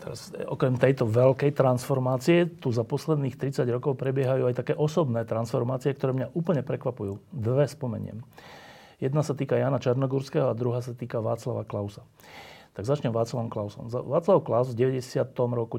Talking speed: 155 wpm